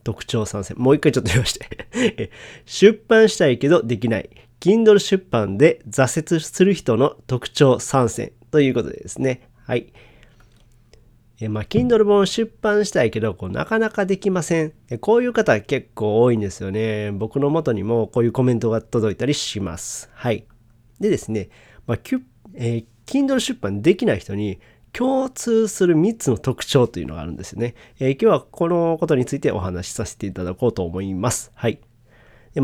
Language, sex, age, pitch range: Japanese, male, 40-59, 110-165 Hz